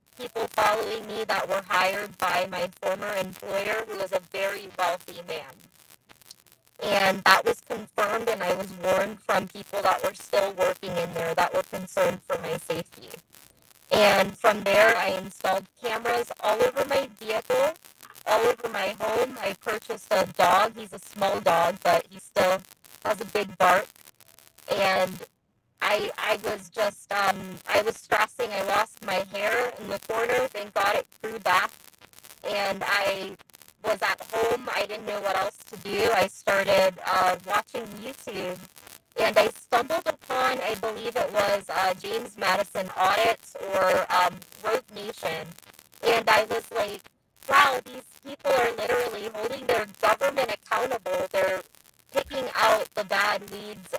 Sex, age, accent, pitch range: female, 30-49, American, 190-225 Hz